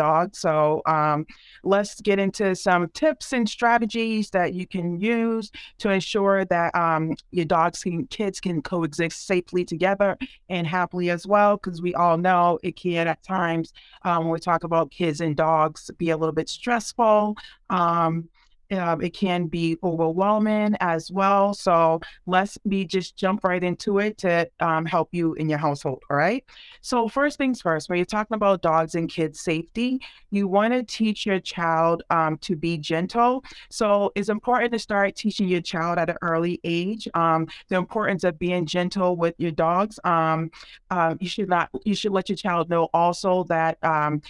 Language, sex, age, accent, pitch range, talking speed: English, female, 40-59, American, 165-205 Hz, 175 wpm